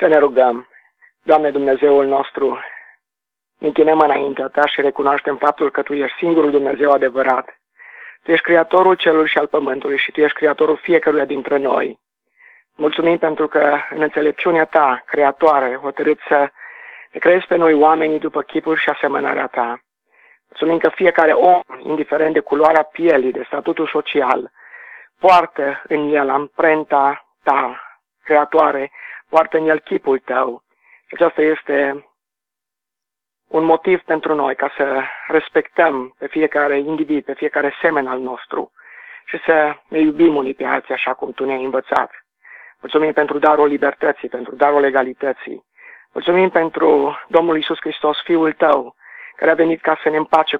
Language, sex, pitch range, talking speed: Romanian, male, 140-160 Hz, 145 wpm